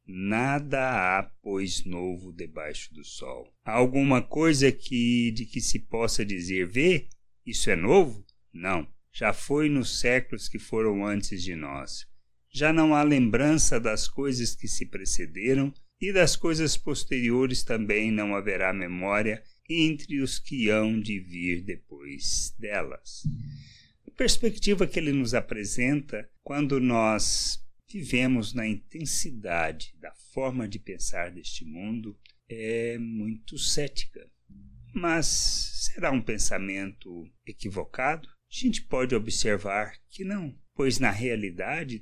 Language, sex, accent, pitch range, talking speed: Portuguese, male, Brazilian, 100-135 Hz, 125 wpm